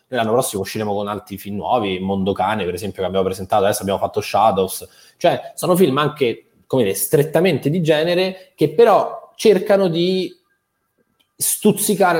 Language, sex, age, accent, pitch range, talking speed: Italian, male, 20-39, native, 115-160 Hz, 155 wpm